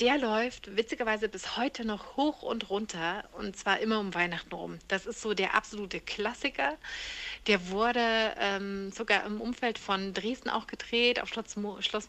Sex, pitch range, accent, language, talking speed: female, 185-225 Hz, German, German, 170 wpm